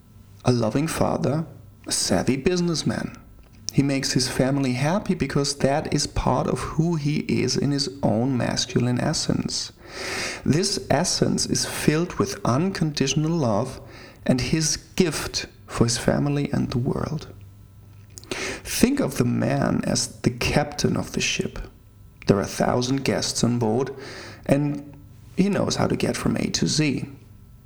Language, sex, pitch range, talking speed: English, male, 110-150 Hz, 145 wpm